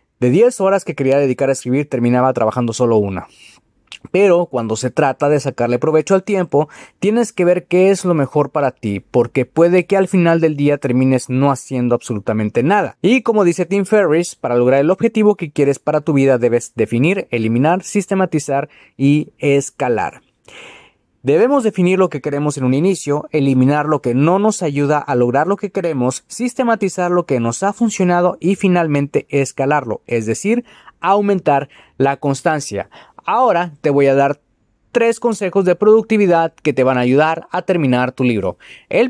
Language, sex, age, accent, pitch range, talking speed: Spanish, male, 30-49, Mexican, 135-190 Hz, 175 wpm